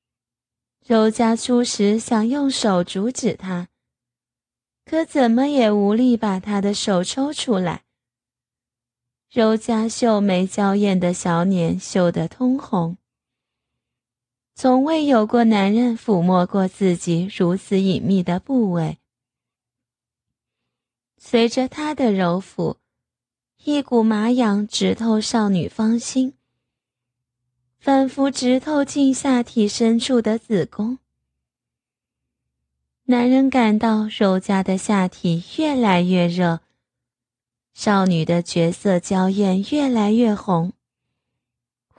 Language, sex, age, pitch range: Chinese, female, 20-39, 165-230 Hz